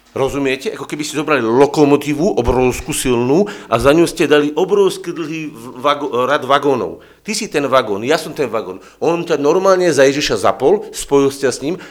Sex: male